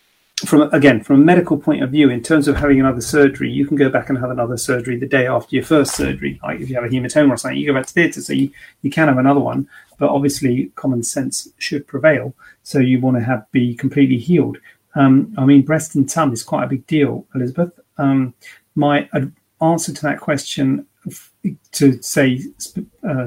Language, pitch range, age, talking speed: English, 130-150 Hz, 40-59, 225 wpm